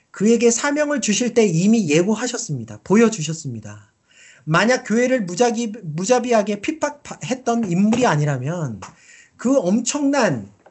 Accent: native